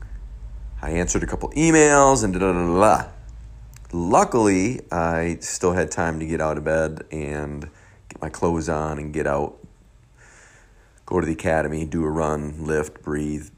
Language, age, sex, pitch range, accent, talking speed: English, 40-59, male, 75-95 Hz, American, 165 wpm